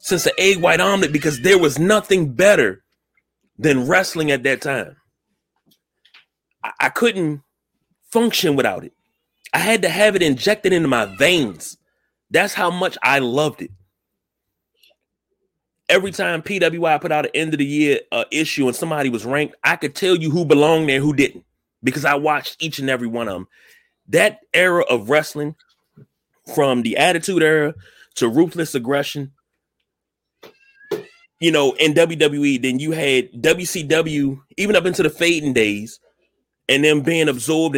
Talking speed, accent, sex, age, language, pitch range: 155 wpm, American, male, 30-49, English, 135-180 Hz